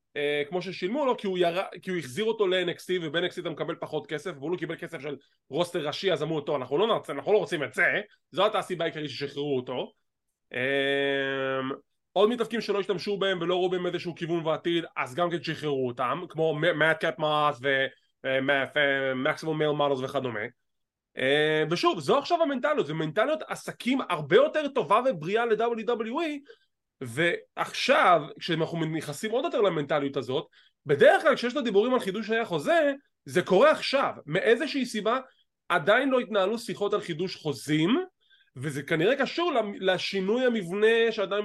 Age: 20-39